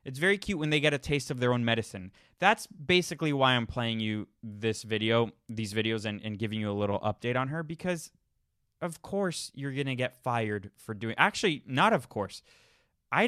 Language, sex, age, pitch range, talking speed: English, male, 20-39, 110-145 Hz, 205 wpm